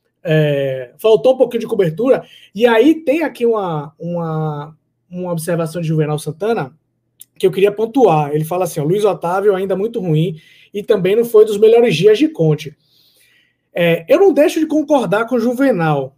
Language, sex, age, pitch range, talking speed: Portuguese, male, 20-39, 170-240 Hz, 180 wpm